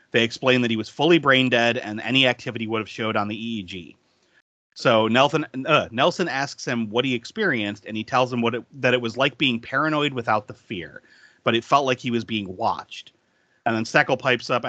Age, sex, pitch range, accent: 30-49, male, 115-140 Hz, American